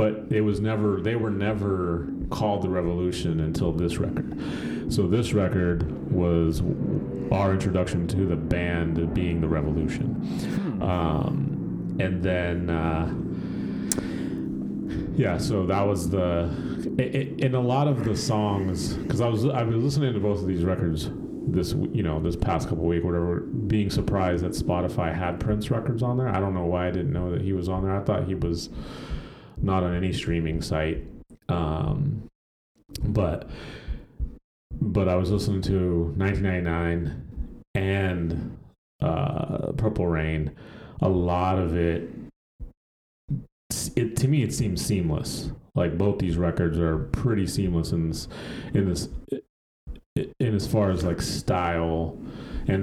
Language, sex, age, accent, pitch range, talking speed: English, male, 30-49, American, 85-105 Hz, 145 wpm